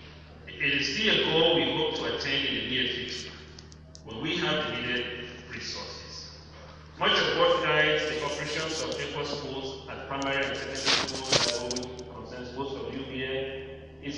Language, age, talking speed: English, 30-49, 160 wpm